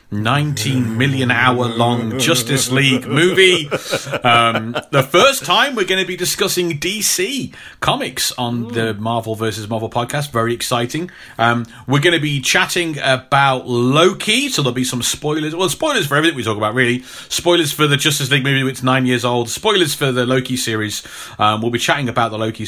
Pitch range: 120-175 Hz